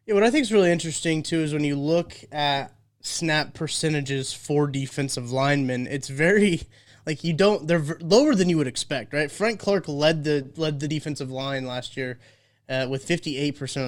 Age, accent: 20-39, American